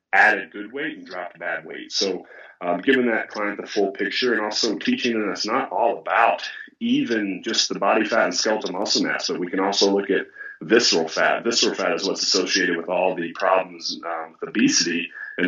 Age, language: 30-49, English